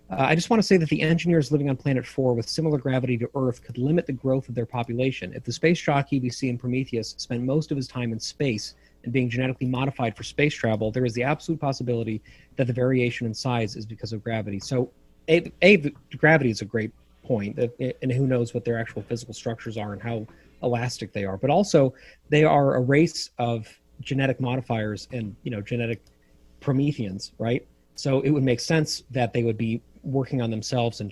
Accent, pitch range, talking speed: American, 115-130 Hz, 210 wpm